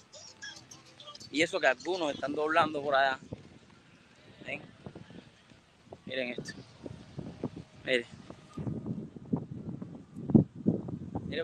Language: English